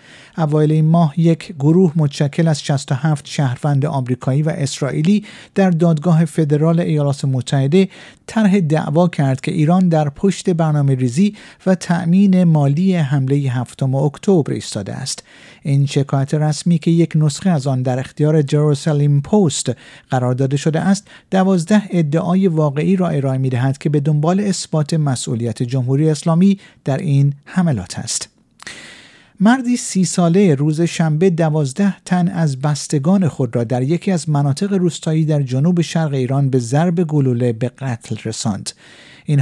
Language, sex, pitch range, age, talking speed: Persian, male, 140-175 Hz, 50-69, 145 wpm